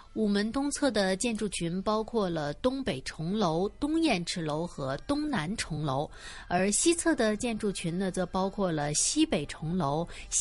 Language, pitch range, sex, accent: Chinese, 170-240 Hz, female, native